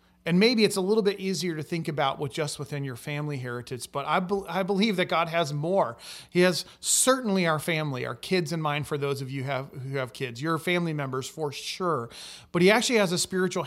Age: 30-49